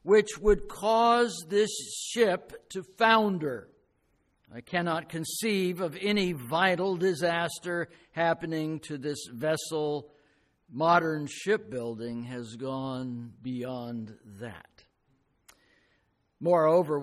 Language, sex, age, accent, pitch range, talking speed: English, male, 60-79, American, 125-170 Hz, 90 wpm